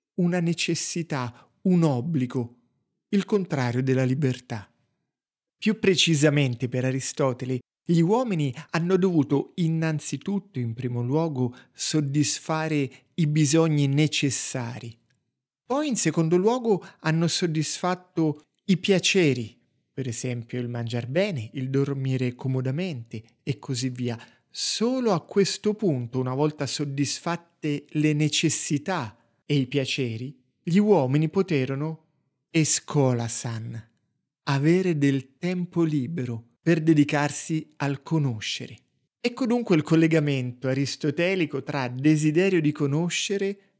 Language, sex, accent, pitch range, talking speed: Italian, male, native, 130-175 Hz, 105 wpm